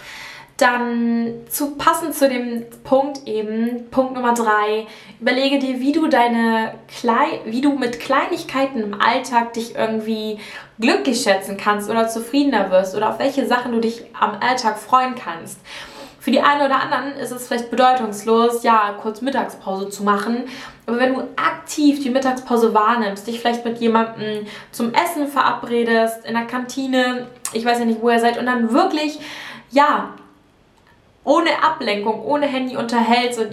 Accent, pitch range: German, 220-260 Hz